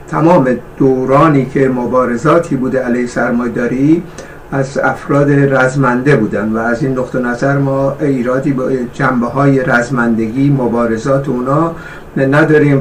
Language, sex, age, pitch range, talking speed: Persian, male, 60-79, 130-160 Hz, 110 wpm